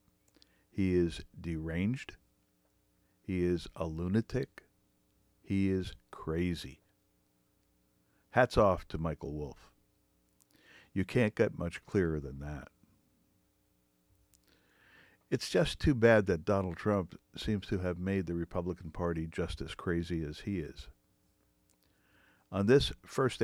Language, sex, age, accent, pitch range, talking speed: English, male, 50-69, American, 80-100 Hz, 115 wpm